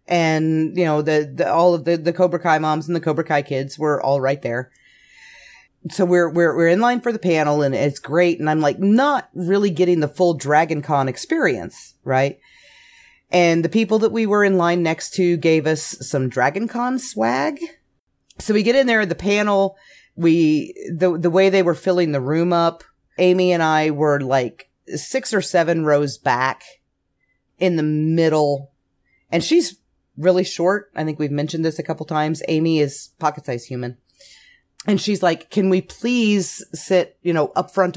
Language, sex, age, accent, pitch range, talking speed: English, female, 30-49, American, 145-190 Hz, 190 wpm